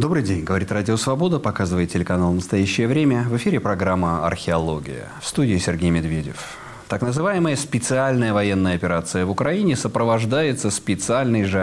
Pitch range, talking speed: 95-140 Hz, 140 wpm